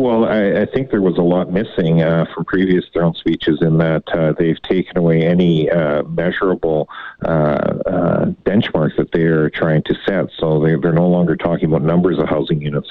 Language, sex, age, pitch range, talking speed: English, male, 40-59, 75-85 Hz, 200 wpm